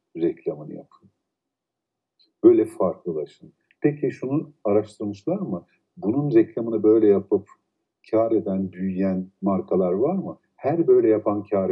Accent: native